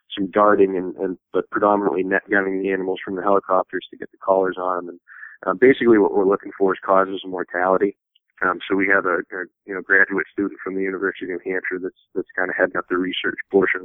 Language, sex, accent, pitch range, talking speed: English, male, American, 90-110 Hz, 235 wpm